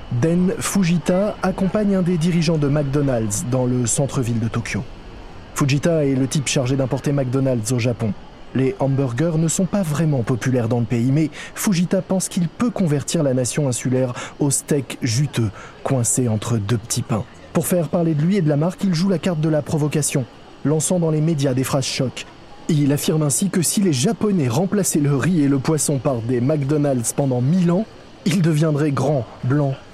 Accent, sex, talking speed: French, male, 190 wpm